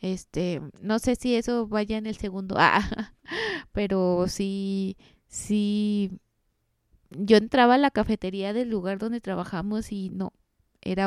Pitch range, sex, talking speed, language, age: 185-215 Hz, female, 135 wpm, Spanish, 20-39